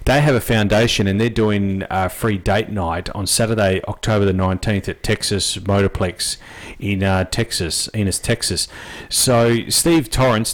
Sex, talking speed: male, 155 wpm